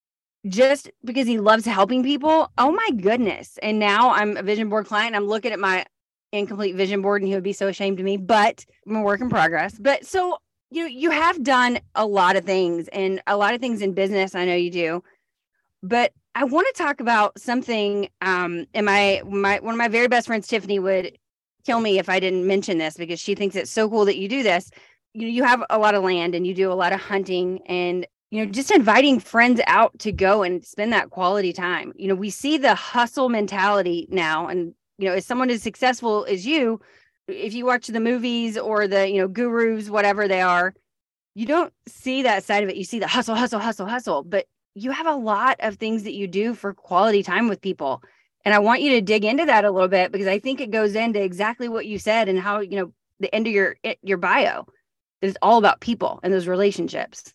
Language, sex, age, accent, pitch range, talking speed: English, female, 30-49, American, 195-235 Hz, 230 wpm